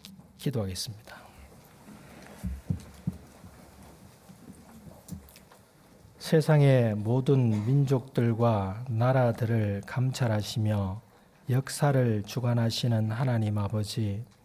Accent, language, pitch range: native, Korean, 115-140 Hz